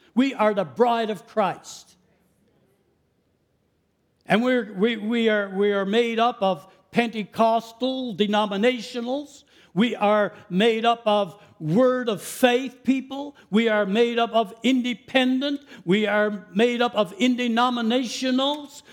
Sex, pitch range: male, 210-270 Hz